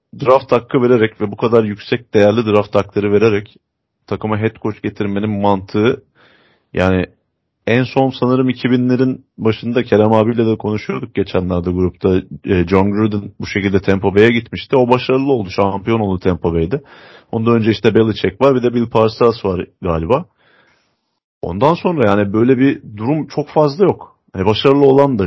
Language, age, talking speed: Turkish, 30-49, 155 wpm